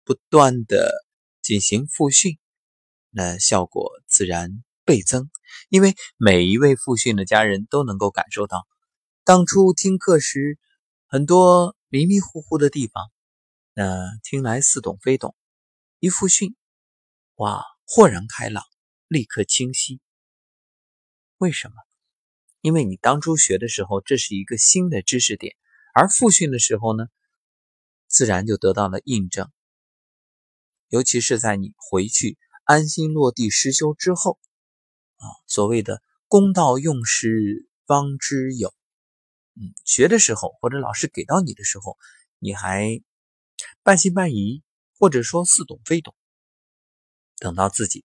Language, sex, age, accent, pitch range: Chinese, male, 20-39, native, 100-160 Hz